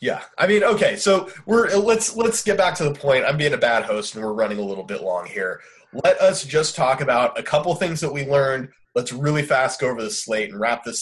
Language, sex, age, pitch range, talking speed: English, male, 20-39, 120-180 Hz, 255 wpm